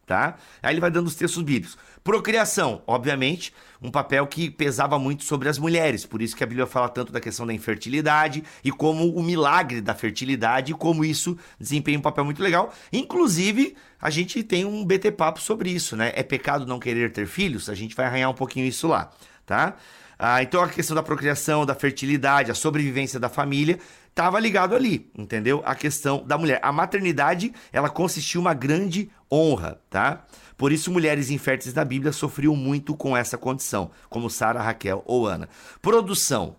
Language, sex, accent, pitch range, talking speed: Portuguese, male, Brazilian, 130-175 Hz, 185 wpm